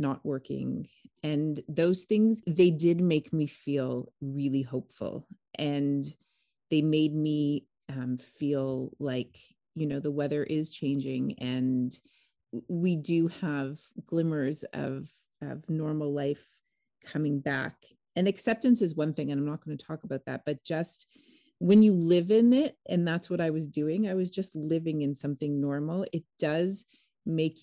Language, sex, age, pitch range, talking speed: English, female, 30-49, 140-165 Hz, 155 wpm